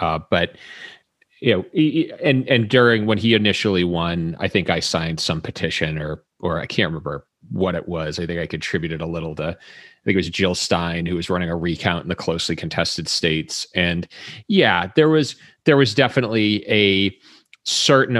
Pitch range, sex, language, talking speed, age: 85-115 Hz, male, English, 190 wpm, 30-49